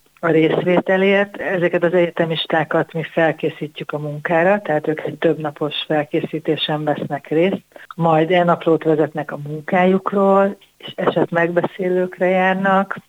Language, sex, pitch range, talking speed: Hungarian, female, 150-180 Hz, 120 wpm